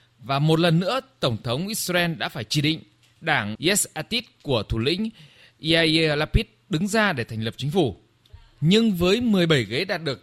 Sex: male